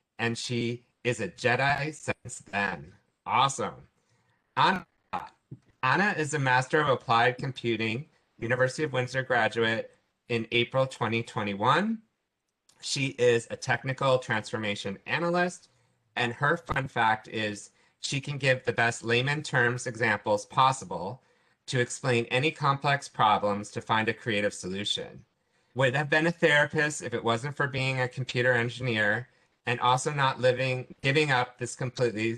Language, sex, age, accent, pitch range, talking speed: English, male, 30-49, American, 115-145 Hz, 135 wpm